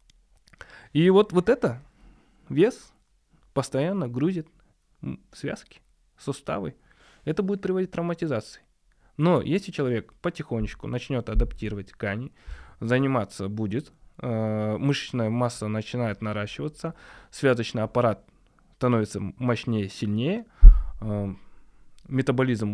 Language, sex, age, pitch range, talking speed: Russian, male, 20-39, 105-140 Hz, 85 wpm